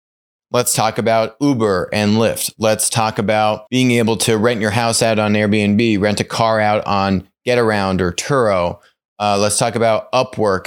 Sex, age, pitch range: male, 30-49, 100-120 Hz